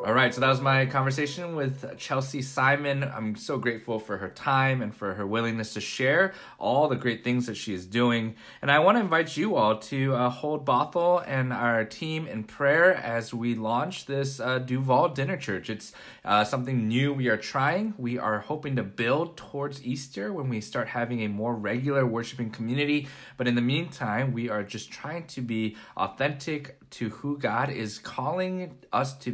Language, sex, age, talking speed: English, male, 20-39, 195 wpm